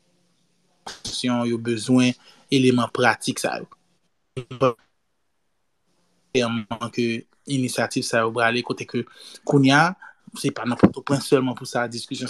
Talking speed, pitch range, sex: 95 wpm, 120-140 Hz, male